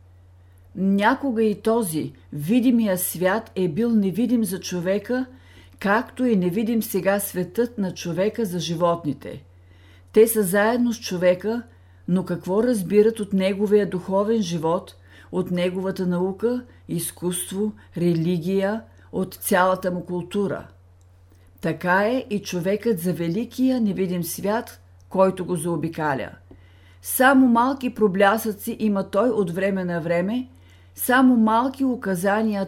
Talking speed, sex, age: 115 wpm, female, 50-69